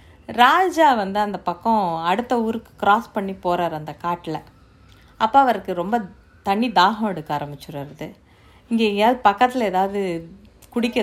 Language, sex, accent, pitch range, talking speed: Tamil, female, native, 170-230 Hz, 120 wpm